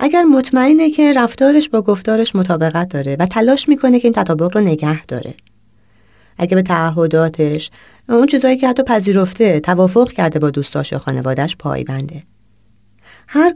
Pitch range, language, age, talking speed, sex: 150-235 Hz, Persian, 30-49, 145 wpm, female